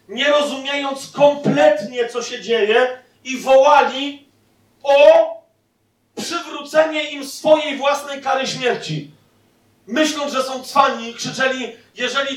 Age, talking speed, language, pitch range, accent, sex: 40-59, 105 wpm, Polish, 195-270 Hz, native, male